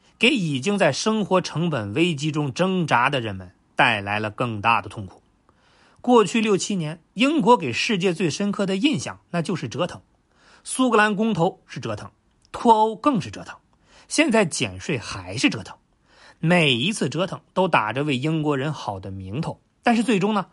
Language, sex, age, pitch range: Chinese, male, 30-49, 140-210 Hz